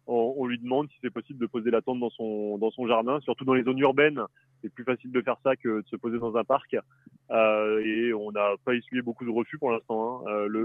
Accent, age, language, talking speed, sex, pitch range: French, 30-49, French, 265 wpm, male, 110-130 Hz